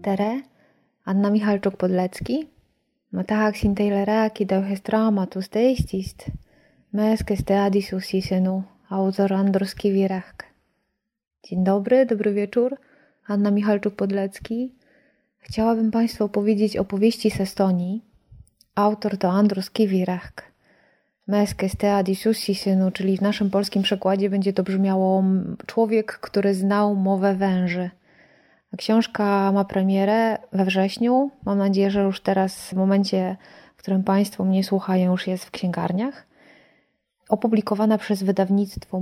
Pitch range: 190-215 Hz